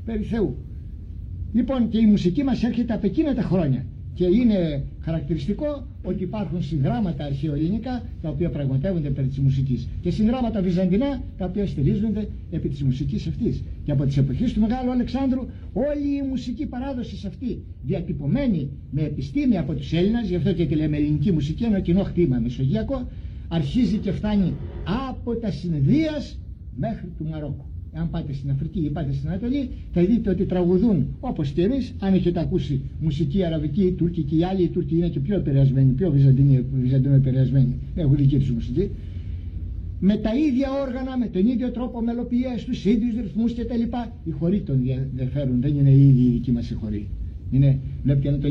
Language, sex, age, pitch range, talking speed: Greek, male, 60-79, 135-210 Hz, 170 wpm